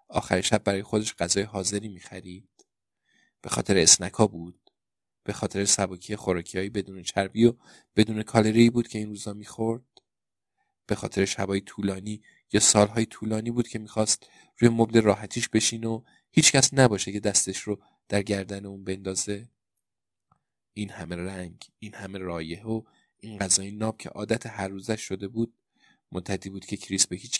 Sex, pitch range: male, 95-110 Hz